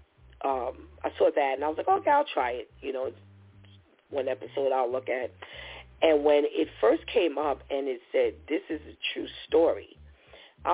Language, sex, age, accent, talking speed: English, female, 40-59, American, 190 wpm